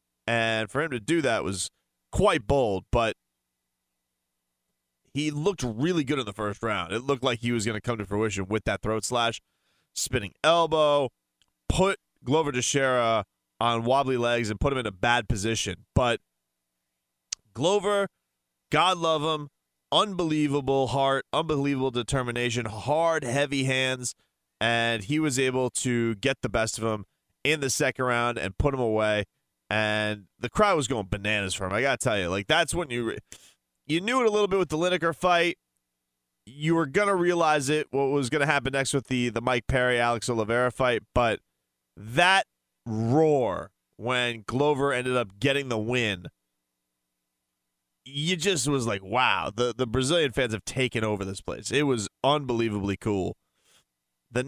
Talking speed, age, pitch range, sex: 170 wpm, 30-49, 100-140 Hz, male